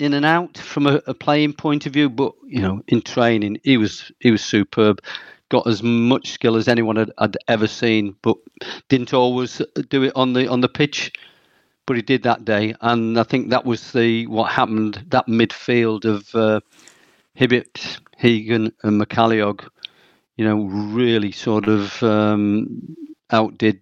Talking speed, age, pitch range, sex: 170 wpm, 50-69, 110-135 Hz, male